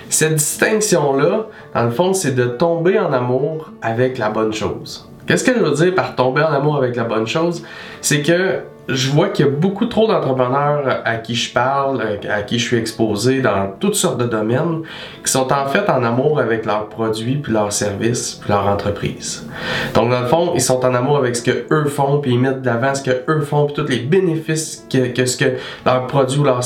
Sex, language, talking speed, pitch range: male, French, 220 wpm, 120-145 Hz